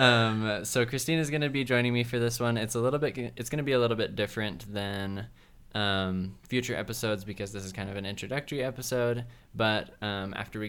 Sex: male